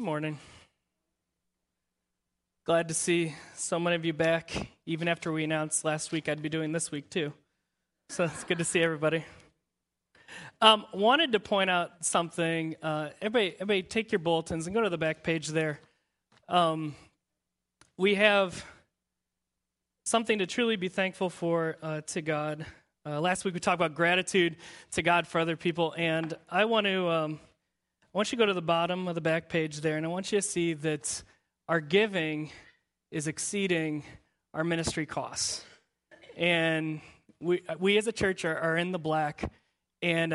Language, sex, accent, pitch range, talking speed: English, male, American, 155-185 Hz, 170 wpm